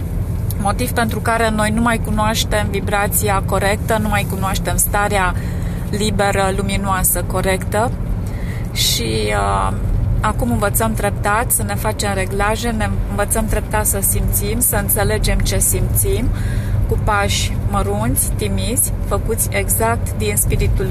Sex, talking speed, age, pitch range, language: female, 120 wpm, 20-39, 90-105 Hz, Romanian